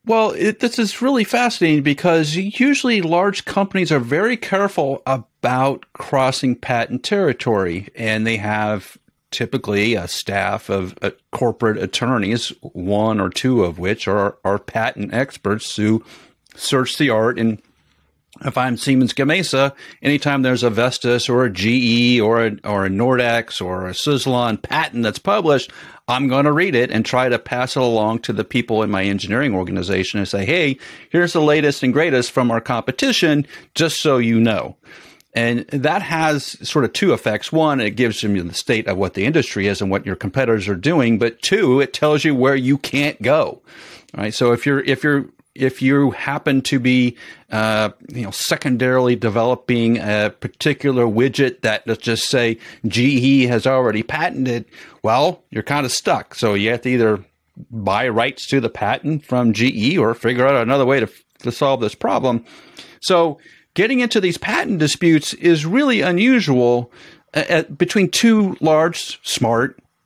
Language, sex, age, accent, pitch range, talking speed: English, male, 50-69, American, 110-150 Hz, 170 wpm